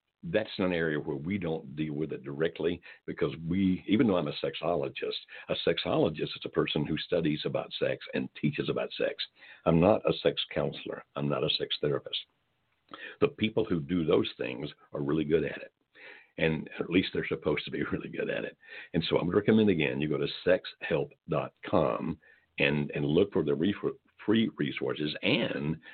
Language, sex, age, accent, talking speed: English, male, 60-79, American, 190 wpm